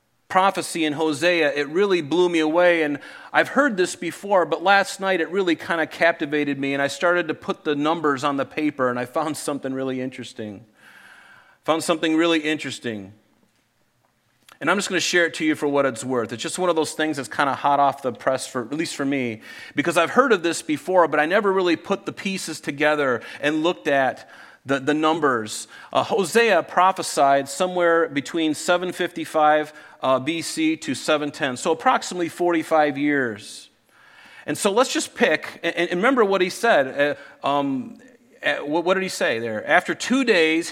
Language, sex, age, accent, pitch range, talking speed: English, male, 40-59, American, 140-180 Hz, 190 wpm